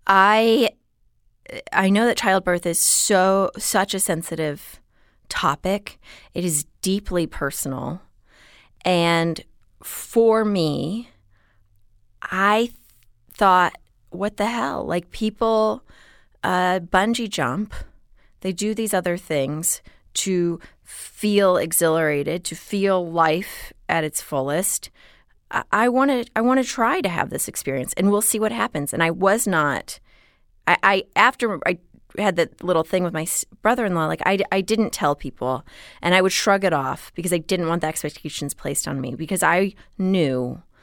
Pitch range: 155-205 Hz